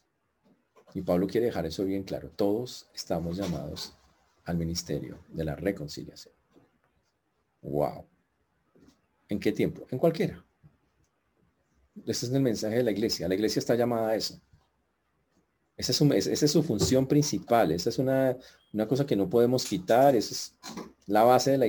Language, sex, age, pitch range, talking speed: Spanish, male, 40-59, 95-125 Hz, 150 wpm